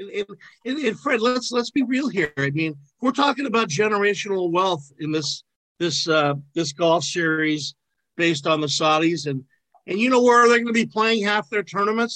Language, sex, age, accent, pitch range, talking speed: English, male, 50-69, American, 155-215 Hz, 195 wpm